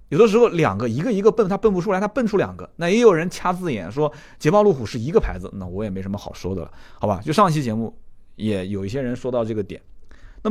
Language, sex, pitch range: Chinese, male, 100-150 Hz